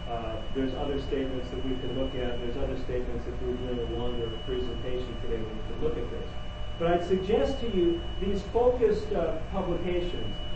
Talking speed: 180 wpm